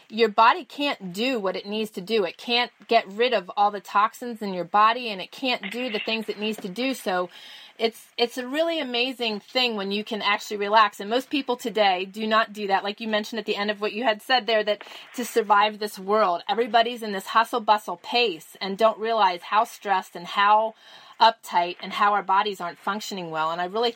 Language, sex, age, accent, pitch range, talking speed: English, female, 30-49, American, 205-240 Hz, 225 wpm